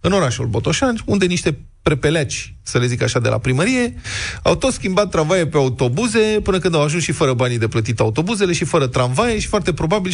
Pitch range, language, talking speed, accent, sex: 120-175 Hz, Romanian, 205 wpm, native, male